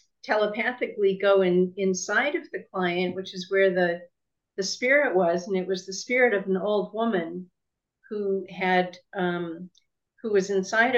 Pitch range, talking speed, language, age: 185-215 Hz, 160 wpm, English, 50-69